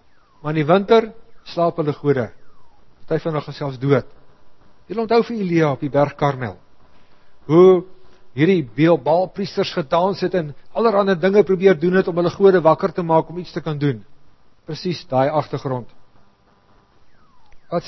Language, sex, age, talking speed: English, male, 50-69, 155 wpm